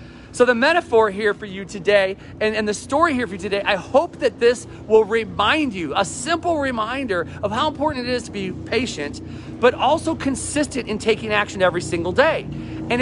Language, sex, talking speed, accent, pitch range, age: English, male, 200 wpm, American, 185-240 Hz, 40-59